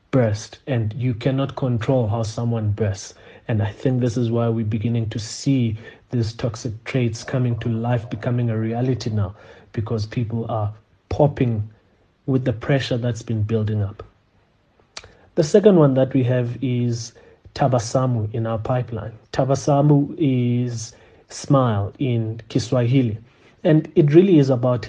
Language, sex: English, male